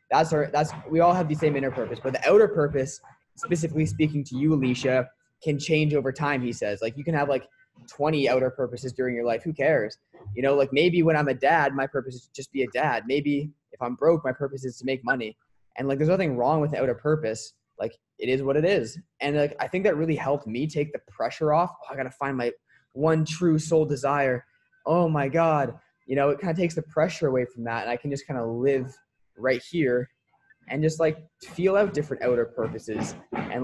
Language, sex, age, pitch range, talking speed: English, male, 20-39, 130-165 Hz, 235 wpm